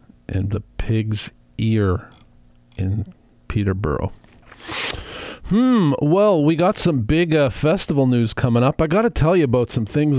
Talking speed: 140 wpm